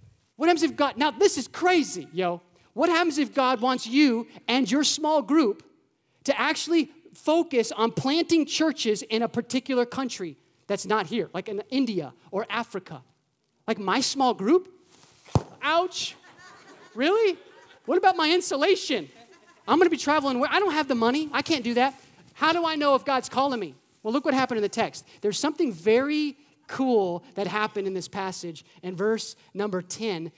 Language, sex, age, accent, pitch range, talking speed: English, male, 30-49, American, 195-300 Hz, 175 wpm